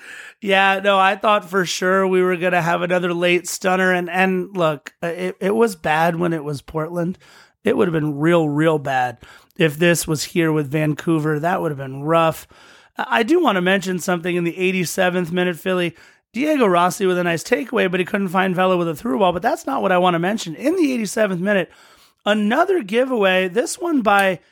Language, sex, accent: English, male, American